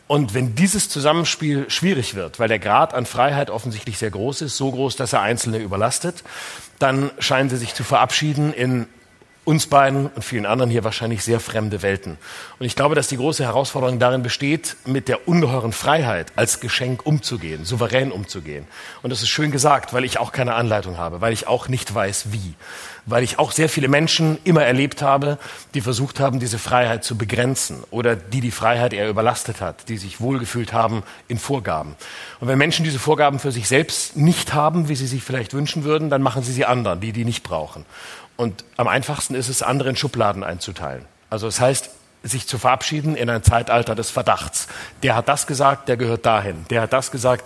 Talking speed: 200 wpm